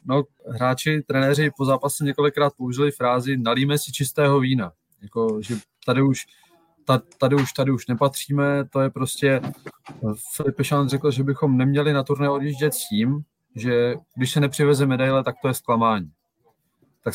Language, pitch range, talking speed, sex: Czech, 120-145 Hz, 160 wpm, male